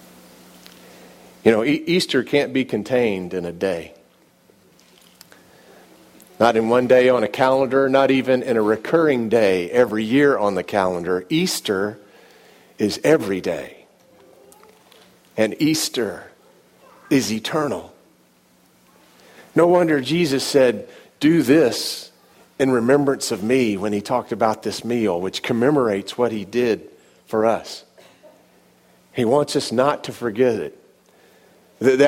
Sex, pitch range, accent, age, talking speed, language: male, 95-145 Hz, American, 50-69, 125 wpm, English